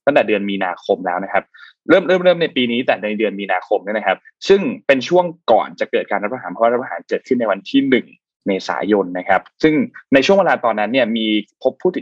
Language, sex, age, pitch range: Thai, male, 20-39, 110-180 Hz